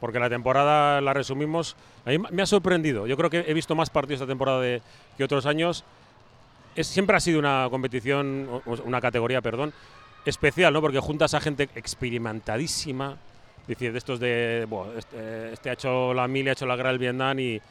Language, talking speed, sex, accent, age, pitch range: Spanish, 205 wpm, male, Spanish, 30-49, 120-145 Hz